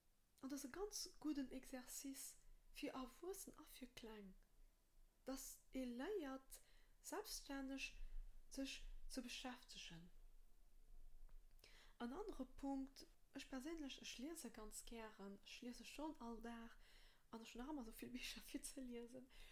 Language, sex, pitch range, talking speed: French, female, 235-295 Hz, 135 wpm